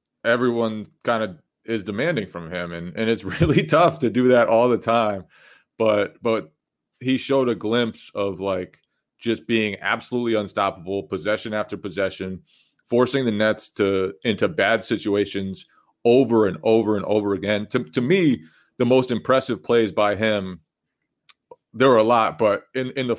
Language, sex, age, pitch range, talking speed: English, male, 30-49, 105-125 Hz, 165 wpm